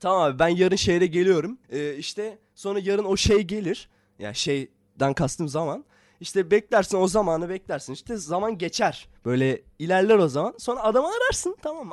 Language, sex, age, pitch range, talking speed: Turkish, male, 20-39, 125-195 Hz, 170 wpm